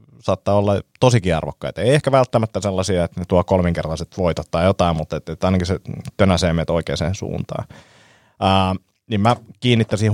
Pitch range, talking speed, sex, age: 90-110 Hz, 160 wpm, male, 30-49